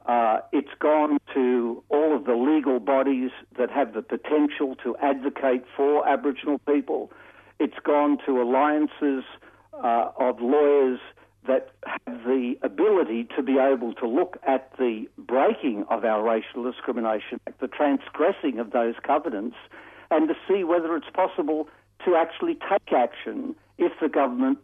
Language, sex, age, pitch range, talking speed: English, male, 60-79, 125-160 Hz, 145 wpm